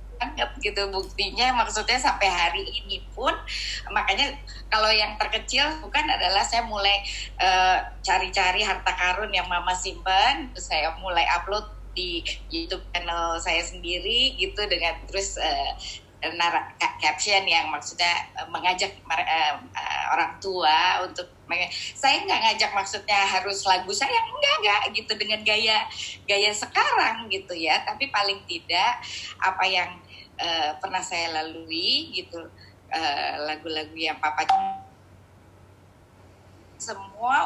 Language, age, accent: Indonesian, 20-39, native